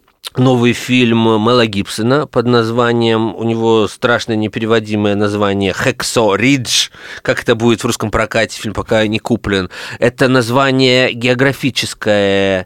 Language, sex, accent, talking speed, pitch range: Russian, male, native, 125 wpm, 110-130 Hz